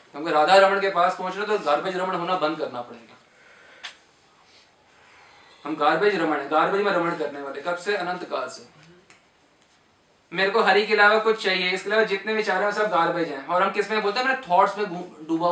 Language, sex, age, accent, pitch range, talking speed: Hindi, male, 20-39, native, 170-230 Hz, 195 wpm